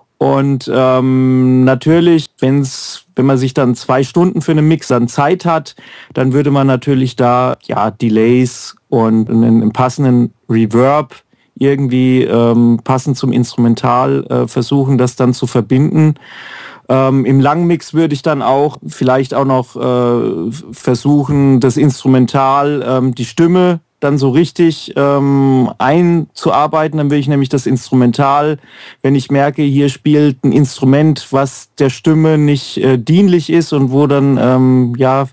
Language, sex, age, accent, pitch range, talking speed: German, male, 40-59, German, 130-150 Hz, 145 wpm